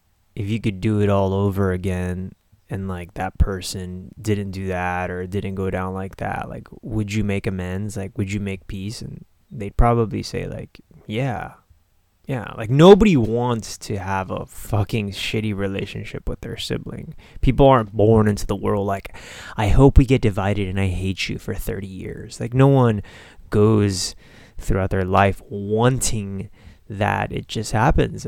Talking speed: 170 wpm